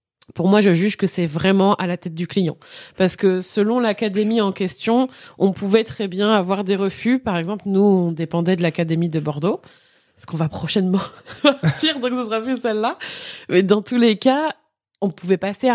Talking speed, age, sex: 200 wpm, 20-39, female